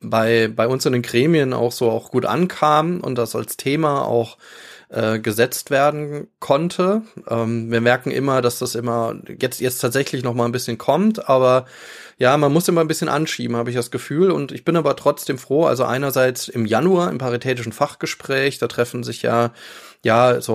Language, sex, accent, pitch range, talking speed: German, male, German, 120-150 Hz, 190 wpm